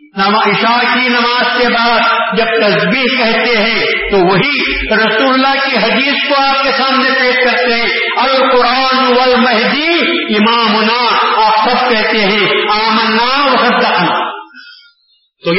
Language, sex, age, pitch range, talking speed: Urdu, male, 50-69, 205-250 Hz, 125 wpm